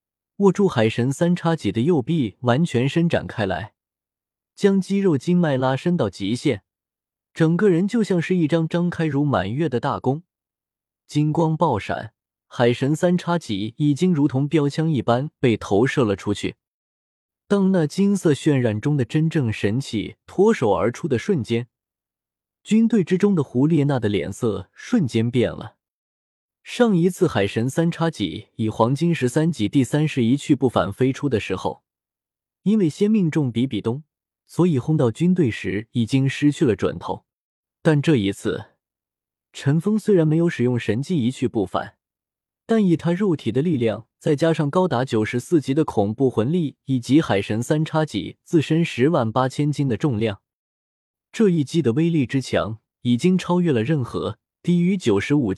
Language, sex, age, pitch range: Chinese, male, 20-39, 115-165 Hz